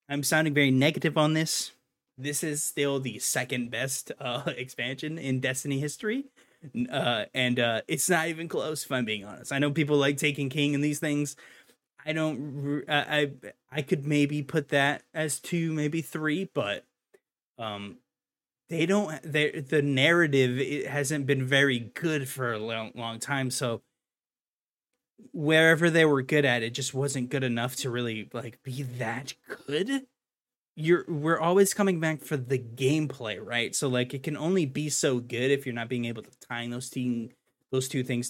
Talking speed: 175 wpm